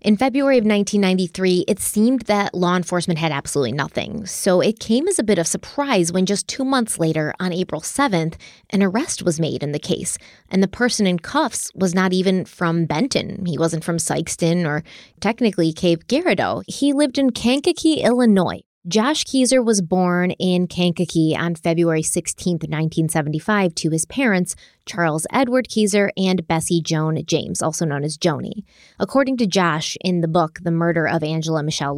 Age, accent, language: 20-39, American, English